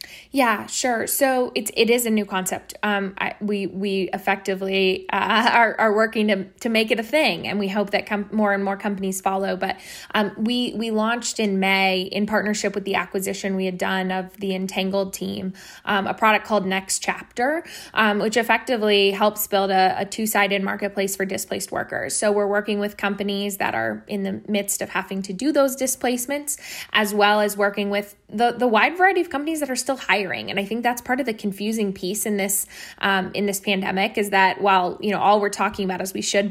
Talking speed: 210 wpm